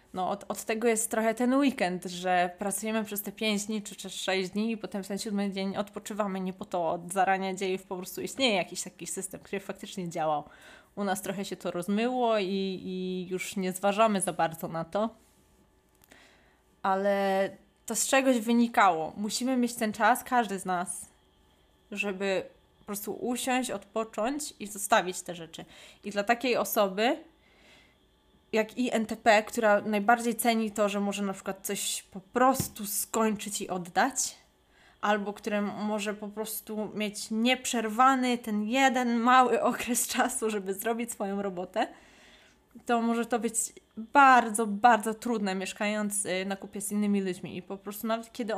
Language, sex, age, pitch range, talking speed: Polish, female, 20-39, 190-230 Hz, 160 wpm